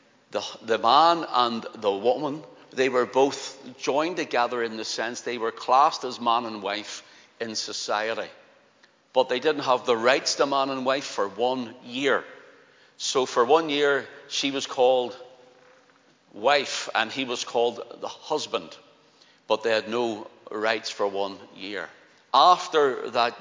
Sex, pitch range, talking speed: male, 115-140 Hz, 155 wpm